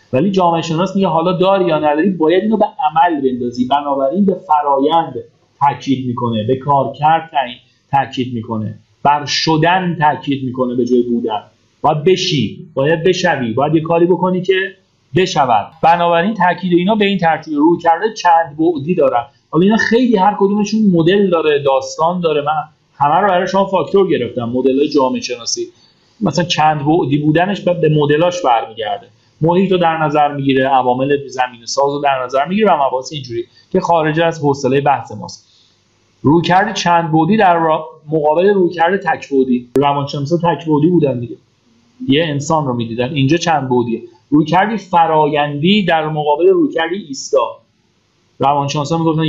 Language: Persian